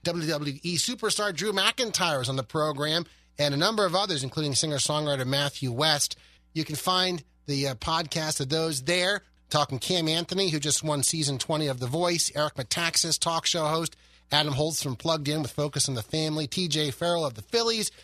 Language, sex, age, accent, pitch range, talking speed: English, male, 30-49, American, 140-180 Hz, 190 wpm